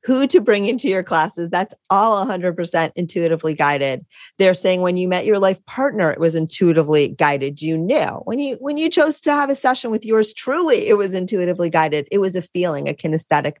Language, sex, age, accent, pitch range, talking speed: English, female, 30-49, American, 155-195 Hz, 205 wpm